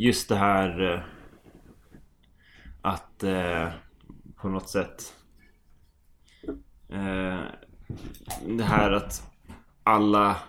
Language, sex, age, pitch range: English, male, 20-39, 80-95 Hz